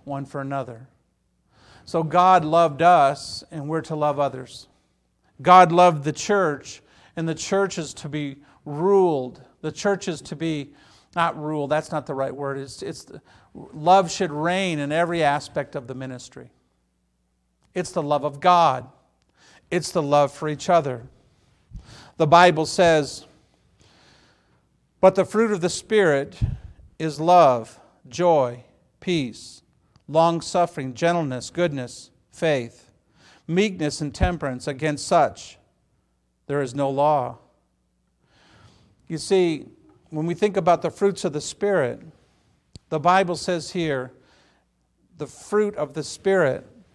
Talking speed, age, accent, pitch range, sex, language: 130 wpm, 50-69, American, 130-175 Hz, male, English